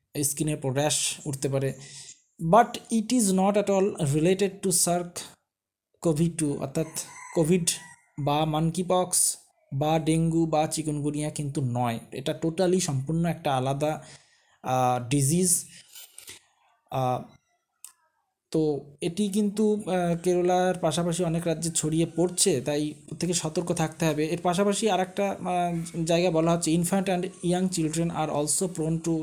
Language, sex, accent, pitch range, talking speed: Bengali, male, native, 145-180 Hz, 115 wpm